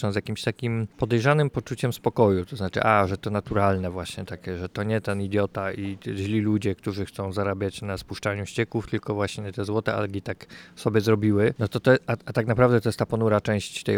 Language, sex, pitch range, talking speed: Polish, male, 100-115 Hz, 215 wpm